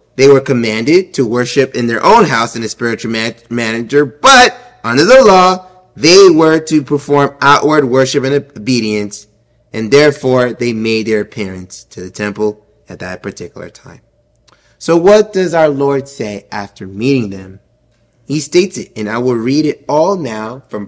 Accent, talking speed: American, 170 wpm